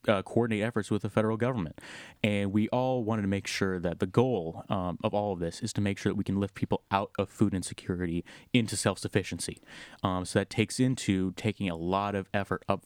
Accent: American